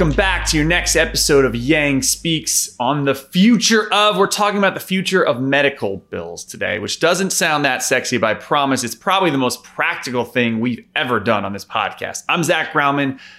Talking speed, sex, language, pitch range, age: 200 wpm, male, English, 120-160 Hz, 30-49